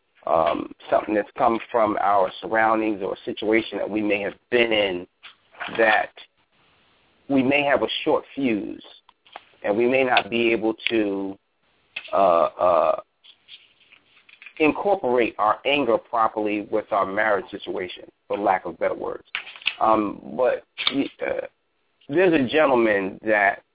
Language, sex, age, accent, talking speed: English, male, 40-59, American, 130 wpm